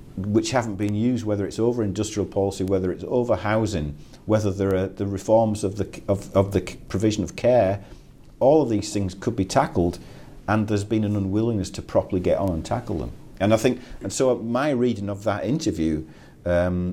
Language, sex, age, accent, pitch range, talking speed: English, male, 50-69, British, 85-110 Hz, 200 wpm